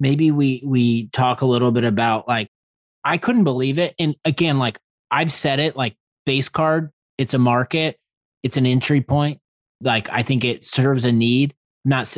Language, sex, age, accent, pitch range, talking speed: English, male, 20-39, American, 115-145 Hz, 185 wpm